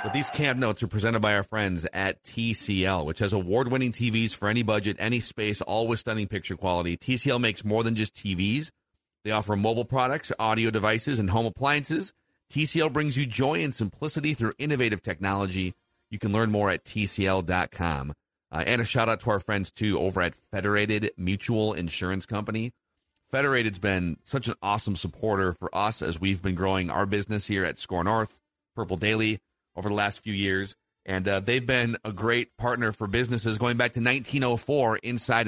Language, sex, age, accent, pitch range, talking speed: English, male, 40-59, American, 95-120 Hz, 180 wpm